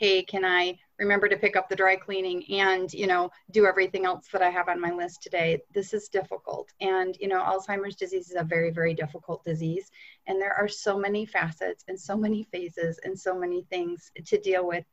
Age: 30-49